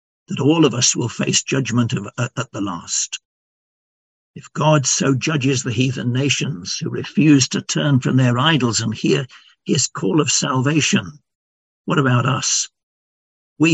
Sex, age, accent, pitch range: male, 60-79, British, 125-155 Hz